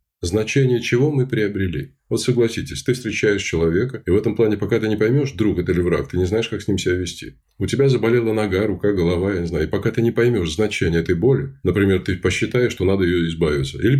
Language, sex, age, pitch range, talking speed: Russian, male, 20-39, 90-125 Hz, 230 wpm